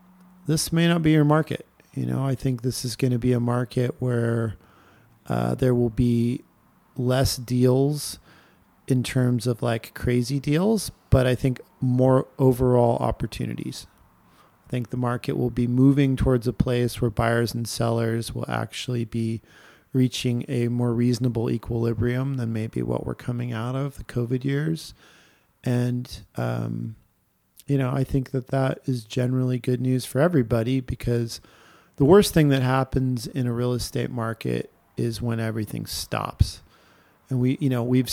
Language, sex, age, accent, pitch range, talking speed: English, male, 40-59, American, 120-135 Hz, 160 wpm